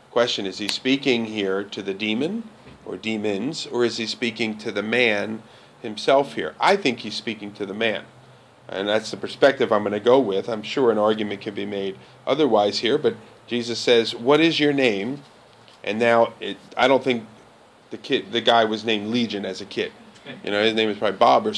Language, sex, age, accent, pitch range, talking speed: English, male, 40-59, American, 105-130 Hz, 210 wpm